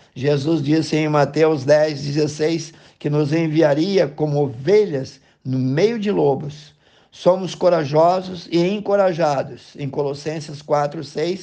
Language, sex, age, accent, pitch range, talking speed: Portuguese, male, 50-69, Brazilian, 140-160 Hz, 105 wpm